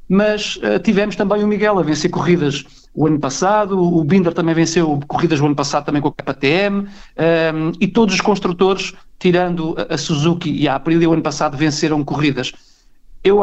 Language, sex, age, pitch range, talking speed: Portuguese, male, 50-69, 155-180 Hz, 175 wpm